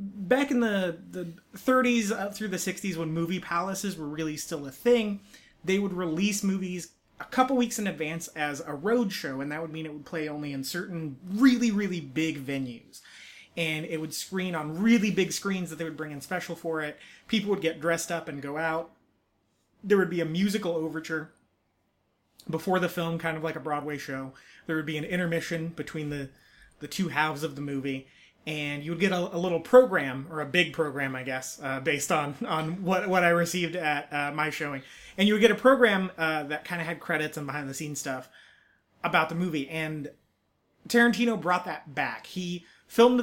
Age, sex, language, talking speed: 30-49, male, English, 205 wpm